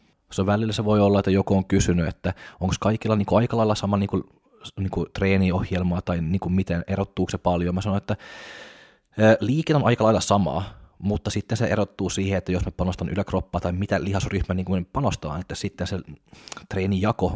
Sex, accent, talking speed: male, native, 180 wpm